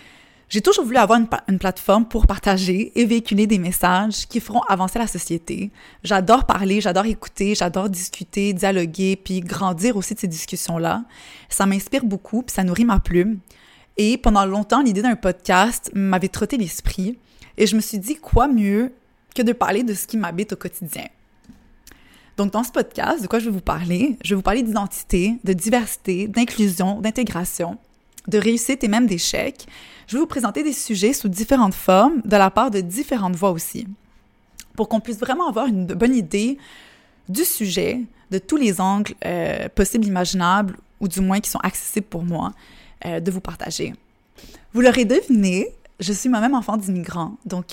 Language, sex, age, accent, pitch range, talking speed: French, female, 20-39, Canadian, 190-235 Hz, 185 wpm